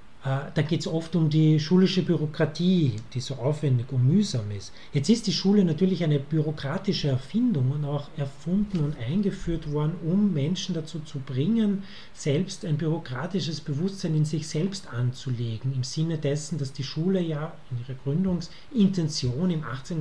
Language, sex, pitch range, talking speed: German, male, 140-175 Hz, 160 wpm